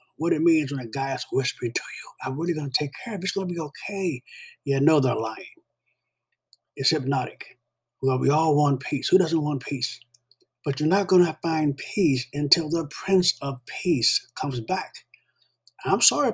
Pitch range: 130-170 Hz